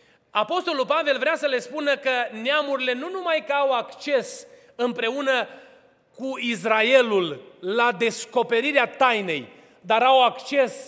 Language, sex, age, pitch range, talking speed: Romanian, male, 30-49, 225-295 Hz, 120 wpm